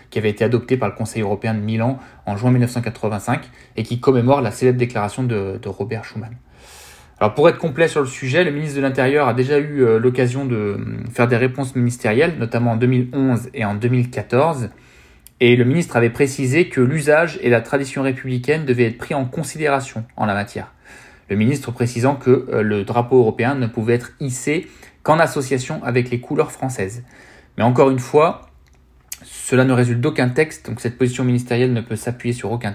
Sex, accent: male, French